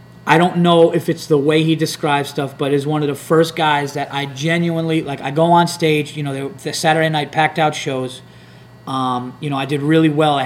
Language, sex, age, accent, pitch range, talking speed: English, male, 30-49, American, 140-170 Hz, 235 wpm